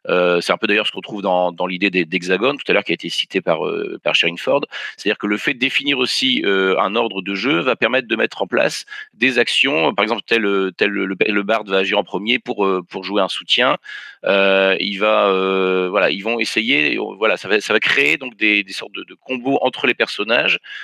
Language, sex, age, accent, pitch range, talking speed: French, male, 40-59, French, 95-115 Hz, 240 wpm